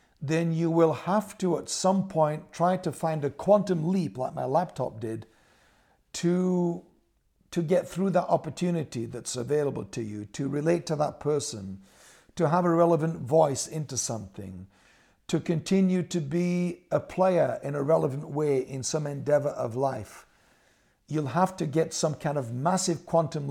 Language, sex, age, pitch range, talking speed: English, male, 60-79, 135-170 Hz, 165 wpm